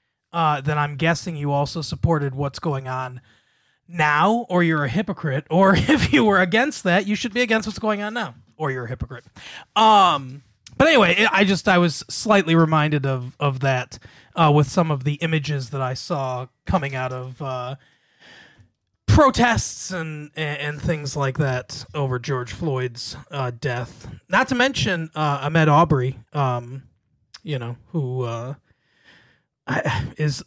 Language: English